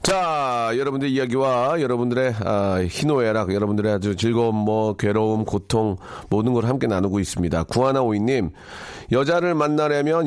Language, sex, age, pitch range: Korean, male, 40-59, 105-155 Hz